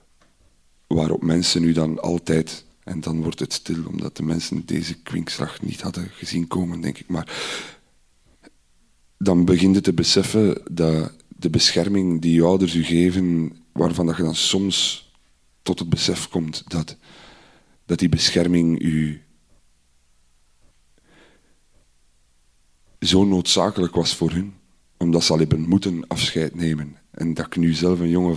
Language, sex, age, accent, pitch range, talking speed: Dutch, male, 40-59, Belgian, 75-90 Hz, 145 wpm